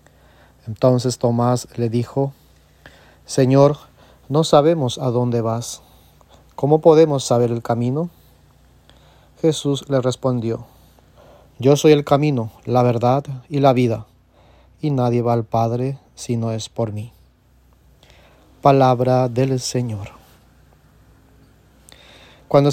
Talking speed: 110 wpm